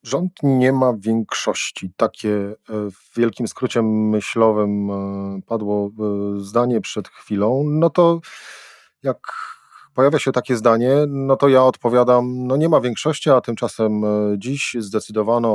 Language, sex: Polish, male